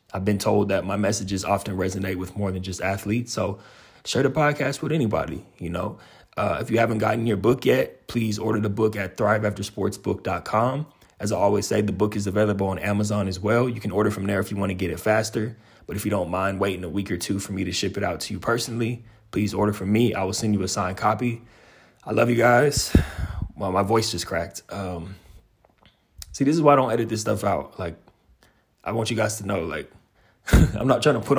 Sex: male